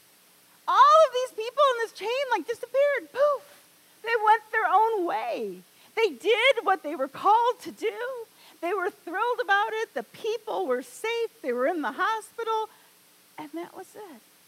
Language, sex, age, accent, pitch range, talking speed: English, female, 40-59, American, 220-355 Hz, 170 wpm